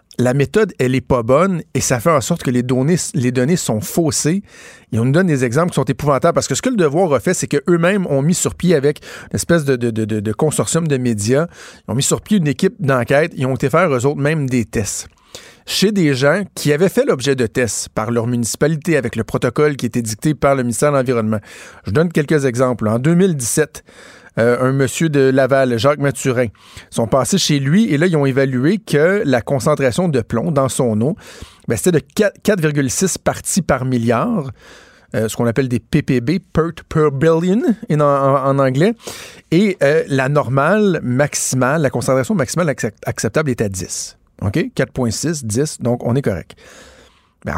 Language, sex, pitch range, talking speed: French, male, 125-165 Hz, 200 wpm